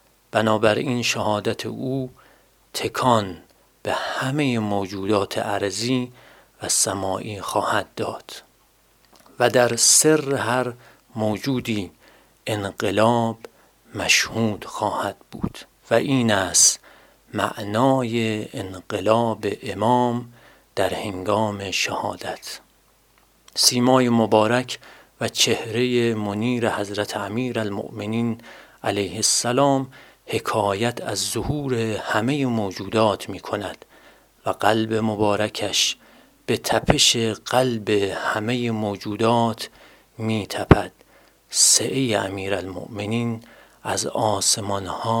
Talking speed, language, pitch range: 80 wpm, Persian, 105-120 Hz